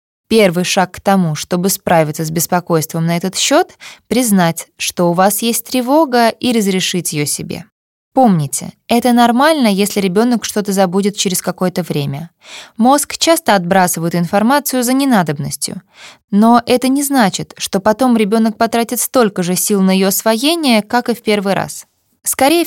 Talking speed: 150 wpm